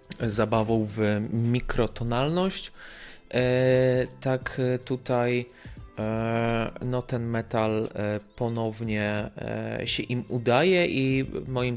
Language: Polish